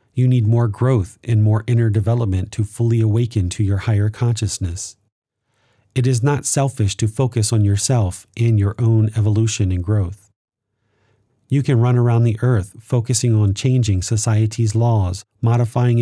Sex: male